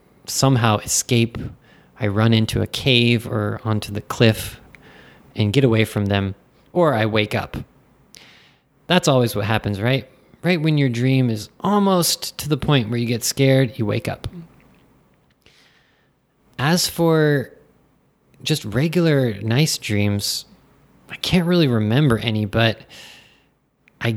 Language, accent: Japanese, American